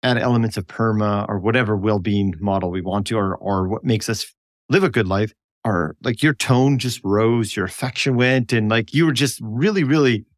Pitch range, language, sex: 105-135 Hz, English, male